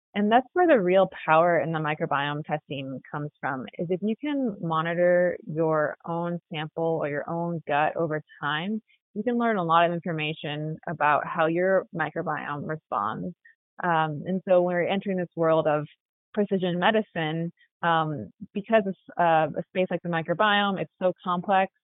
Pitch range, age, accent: 155-180 Hz, 20-39, American